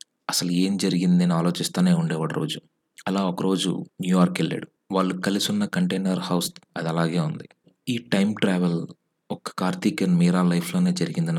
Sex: male